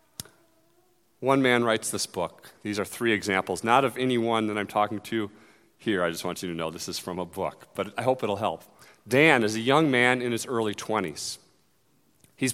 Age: 40-59